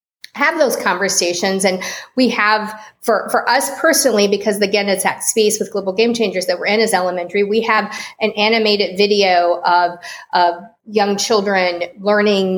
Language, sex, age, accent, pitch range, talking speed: English, female, 40-59, American, 185-220 Hz, 160 wpm